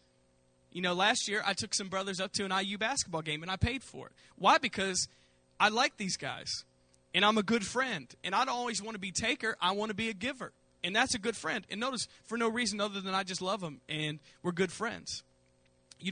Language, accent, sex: English, American, male